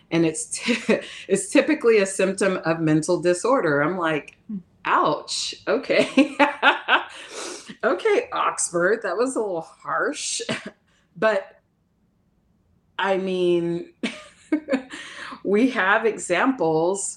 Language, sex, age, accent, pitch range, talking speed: English, female, 30-49, American, 155-195 Hz, 90 wpm